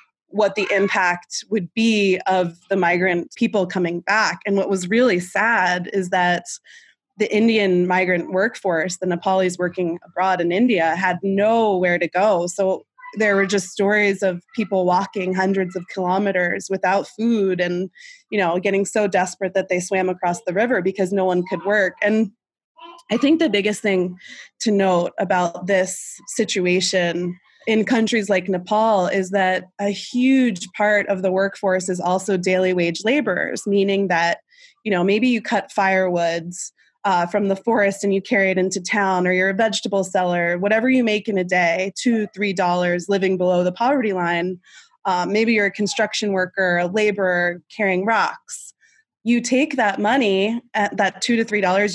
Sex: female